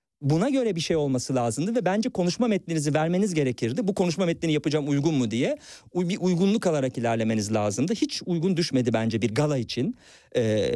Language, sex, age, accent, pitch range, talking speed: Turkish, male, 50-69, native, 125-180 Hz, 180 wpm